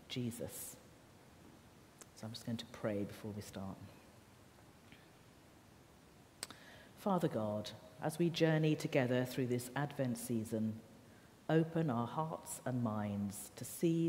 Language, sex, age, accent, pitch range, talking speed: English, female, 50-69, British, 115-150 Hz, 115 wpm